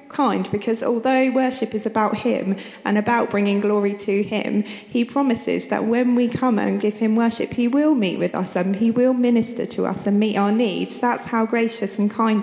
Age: 20-39